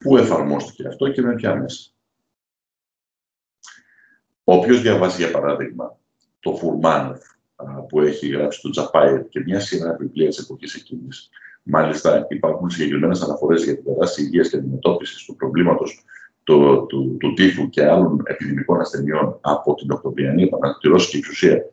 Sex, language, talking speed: male, Greek, 145 wpm